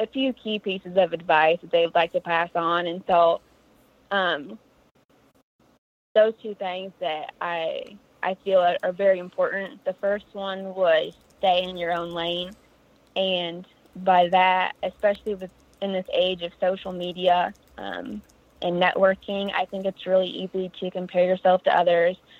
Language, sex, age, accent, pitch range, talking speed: English, female, 20-39, American, 175-195 Hz, 160 wpm